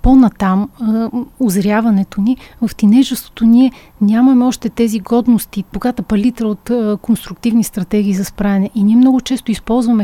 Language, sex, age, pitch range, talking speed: Bulgarian, female, 30-49, 205-235 Hz, 130 wpm